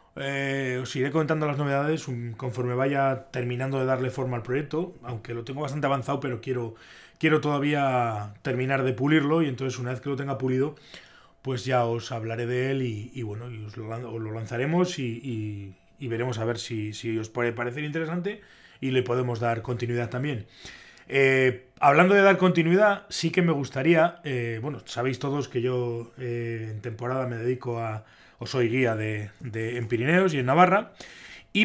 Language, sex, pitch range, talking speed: Spanish, male, 120-145 Hz, 180 wpm